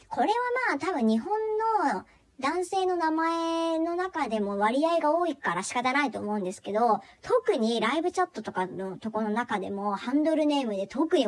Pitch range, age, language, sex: 215-325 Hz, 40-59, Japanese, male